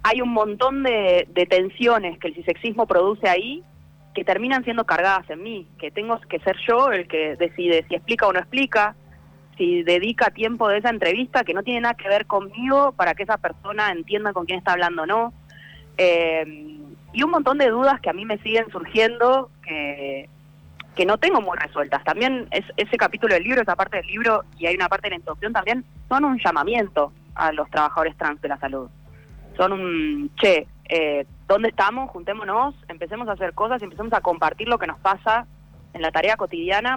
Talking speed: 195 wpm